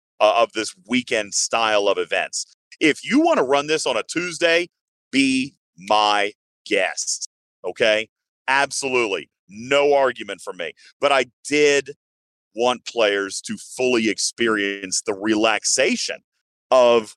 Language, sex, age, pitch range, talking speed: English, male, 40-59, 120-165 Hz, 120 wpm